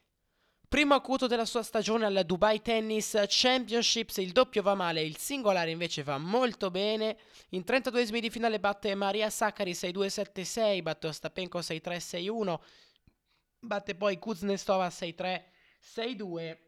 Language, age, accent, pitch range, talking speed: Italian, 20-39, native, 135-195 Hz, 135 wpm